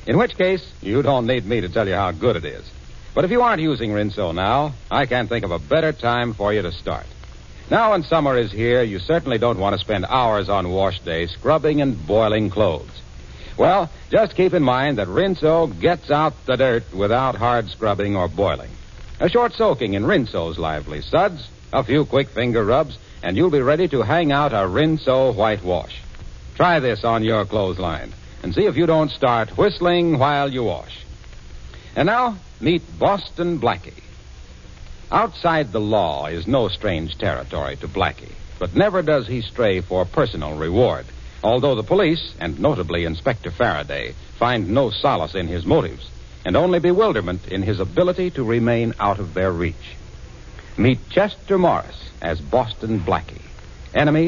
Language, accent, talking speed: English, American, 175 wpm